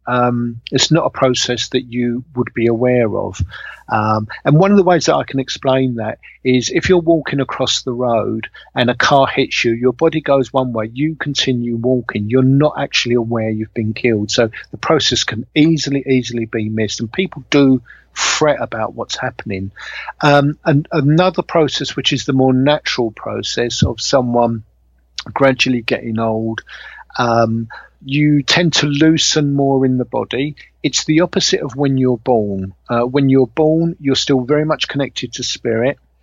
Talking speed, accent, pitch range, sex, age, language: 175 wpm, British, 115-140 Hz, male, 50-69, English